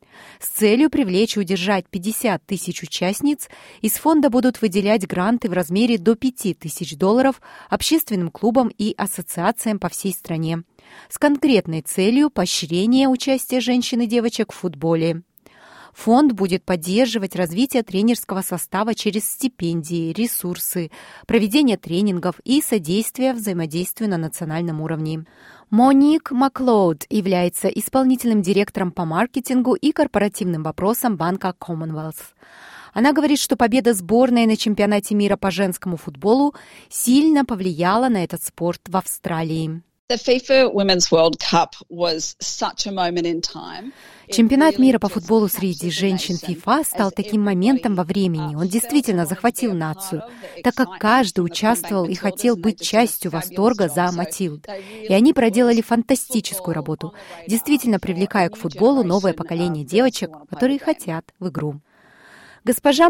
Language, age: Russian, 30-49